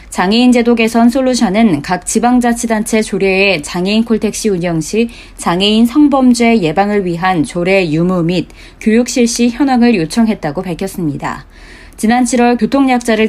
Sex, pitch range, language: female, 185-240 Hz, Korean